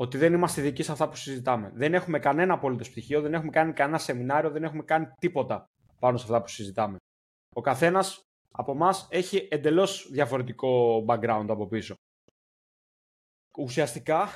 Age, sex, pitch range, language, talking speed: 20-39, male, 130-175 Hz, Greek, 160 wpm